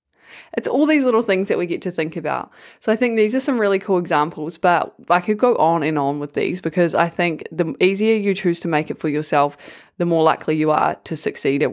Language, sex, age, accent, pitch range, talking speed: English, female, 20-39, Australian, 160-195 Hz, 250 wpm